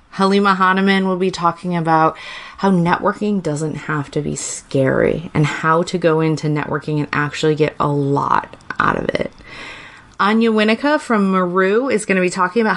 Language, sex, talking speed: English, female, 175 wpm